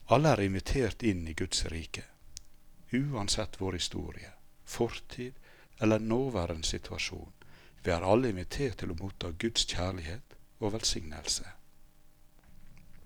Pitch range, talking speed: 85-115 Hz, 115 wpm